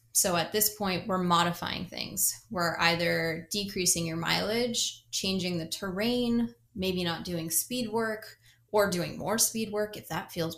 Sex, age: female, 10-29